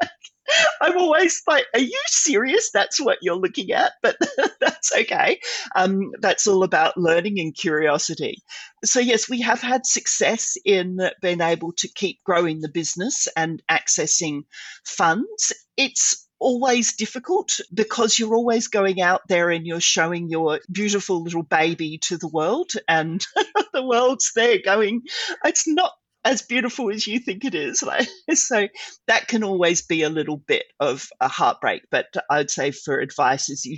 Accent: Australian